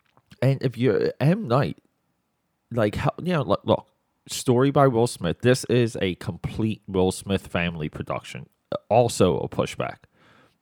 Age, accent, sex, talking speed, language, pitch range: 30-49, American, male, 140 wpm, English, 95-120 Hz